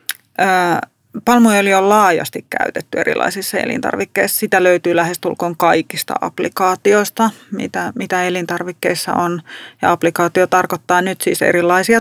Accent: native